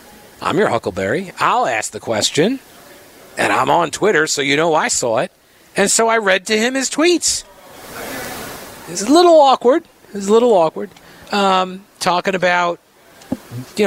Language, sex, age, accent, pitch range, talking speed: English, male, 50-69, American, 140-190 Hz, 160 wpm